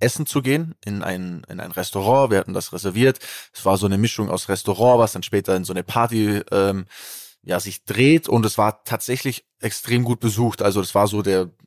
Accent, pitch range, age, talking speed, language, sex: German, 105-120 Hz, 20-39, 215 wpm, German, male